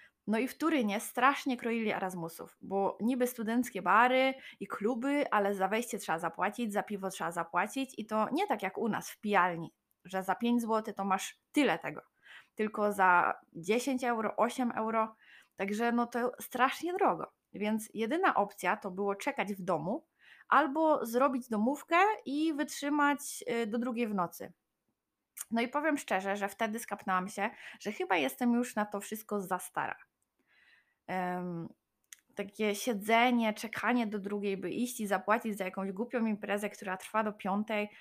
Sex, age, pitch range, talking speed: female, 20-39, 200-255 Hz, 160 wpm